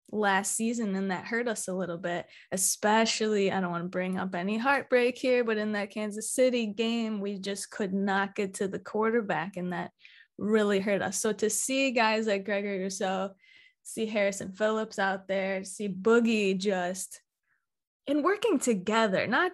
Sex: female